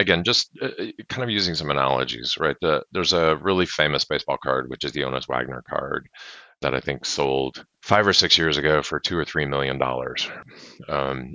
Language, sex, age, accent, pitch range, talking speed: English, male, 40-59, American, 70-105 Hz, 190 wpm